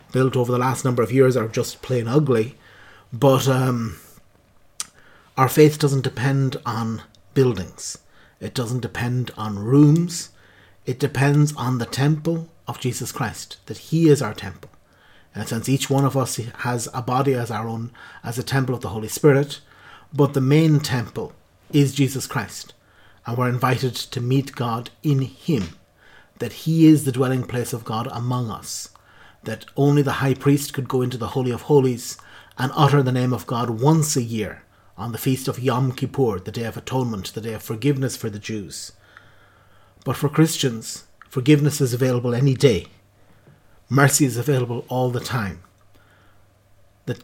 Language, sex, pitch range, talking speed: English, male, 110-135 Hz, 170 wpm